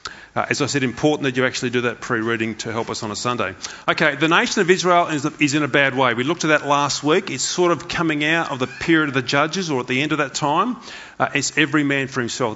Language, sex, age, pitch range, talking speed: English, male, 30-49, 130-165 Hz, 275 wpm